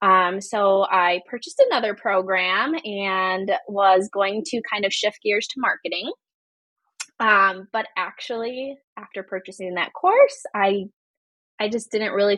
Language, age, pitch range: English, 20-39, 190-260 Hz